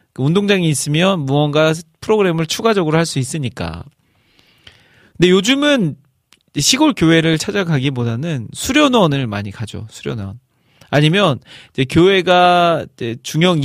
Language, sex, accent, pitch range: Korean, male, native, 125-185 Hz